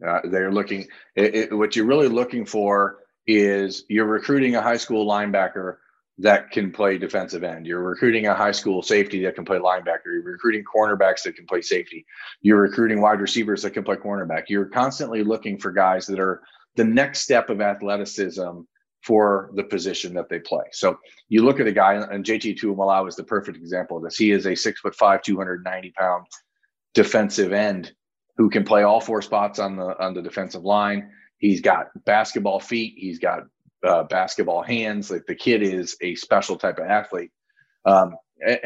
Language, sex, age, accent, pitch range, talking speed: English, male, 40-59, American, 95-115 Hz, 190 wpm